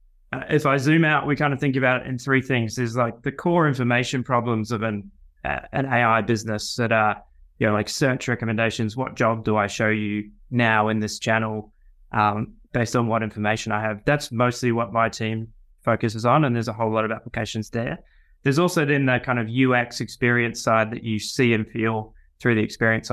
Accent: Australian